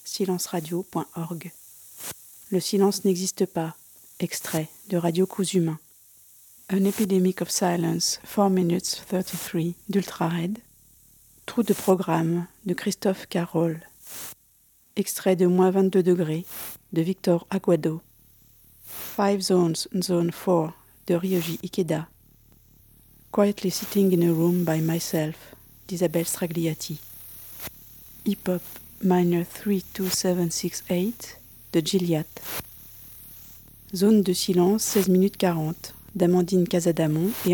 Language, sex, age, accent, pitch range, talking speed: French, female, 50-69, French, 165-190 Hz, 105 wpm